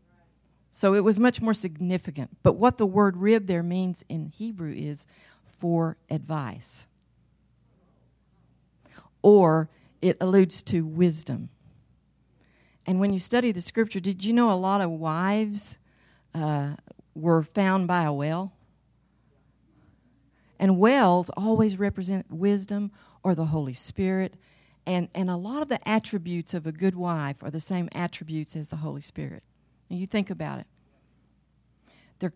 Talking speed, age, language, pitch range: 140 wpm, 40-59, English, 165-215 Hz